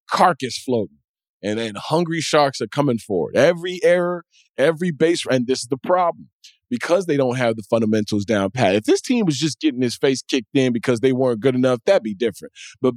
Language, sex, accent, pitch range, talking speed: English, male, American, 110-150 Hz, 210 wpm